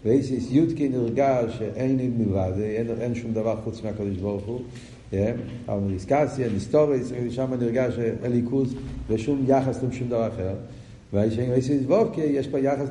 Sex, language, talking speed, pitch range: male, Hebrew, 130 wpm, 110-135 Hz